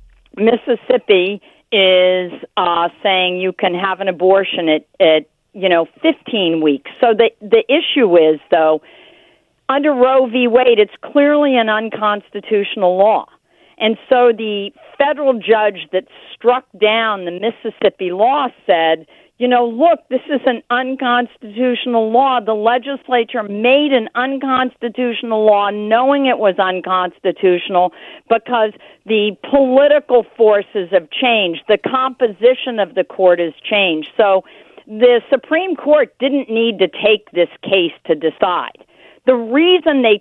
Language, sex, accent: English, female, American